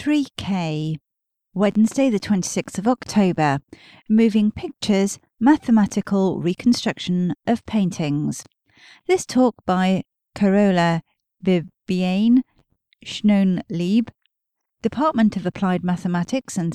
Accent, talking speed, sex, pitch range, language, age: British, 80 wpm, female, 180-240 Hz, English, 40-59